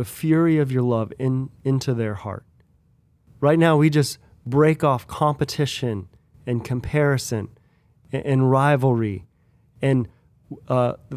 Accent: American